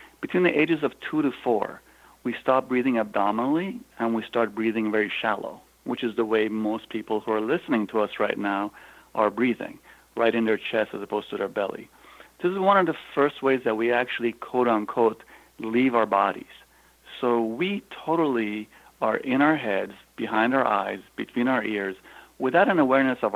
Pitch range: 110-125 Hz